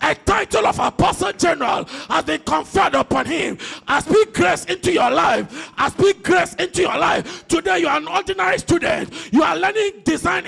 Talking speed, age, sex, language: 185 wpm, 50-69, male, English